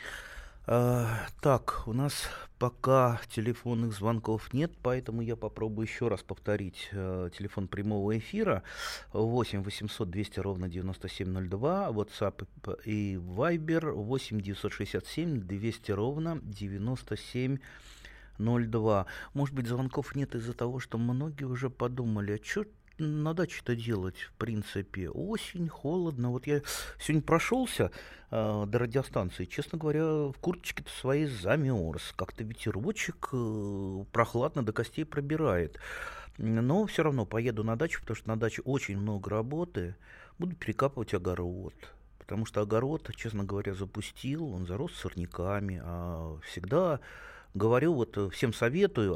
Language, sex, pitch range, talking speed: Russian, male, 100-140 Hz, 120 wpm